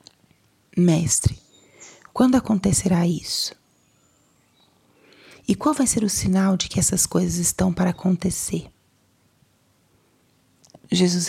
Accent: Brazilian